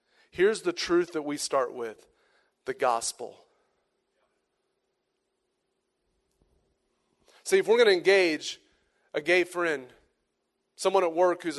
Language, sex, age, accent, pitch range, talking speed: English, male, 30-49, American, 170-240 Hz, 115 wpm